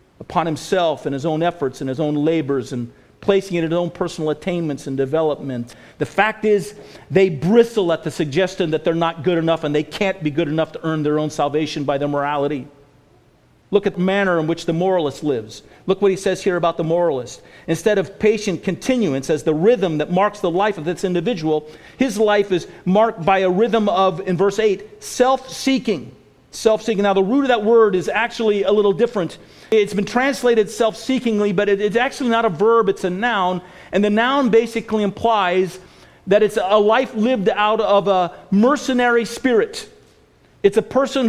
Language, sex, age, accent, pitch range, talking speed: English, male, 50-69, American, 170-230 Hz, 195 wpm